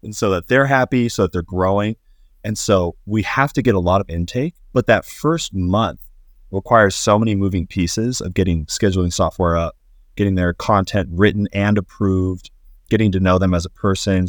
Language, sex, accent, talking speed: English, male, American, 195 wpm